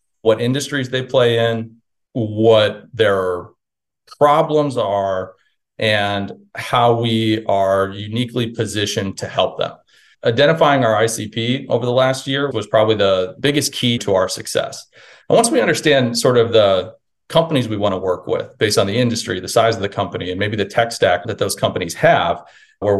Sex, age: male, 40-59